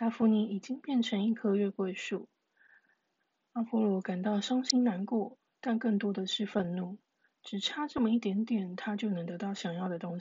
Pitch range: 190-235 Hz